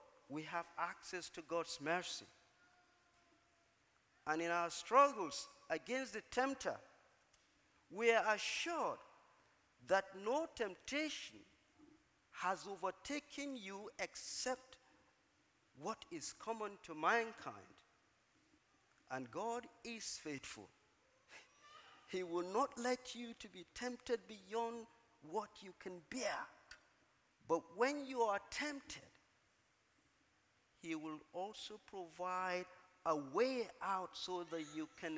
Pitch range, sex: 160-240 Hz, male